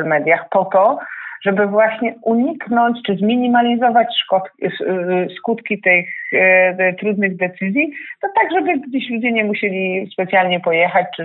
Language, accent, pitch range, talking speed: Polish, native, 175-210 Hz, 130 wpm